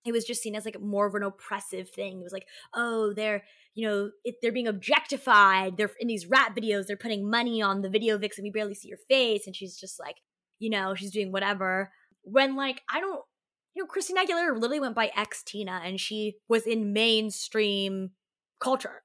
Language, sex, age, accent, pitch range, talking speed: English, female, 20-39, American, 195-235 Hz, 210 wpm